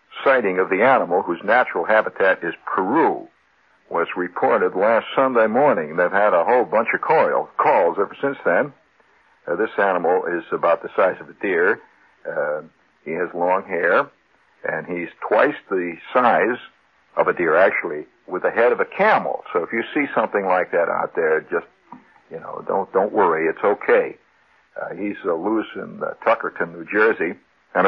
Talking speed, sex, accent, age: 175 wpm, male, American, 60-79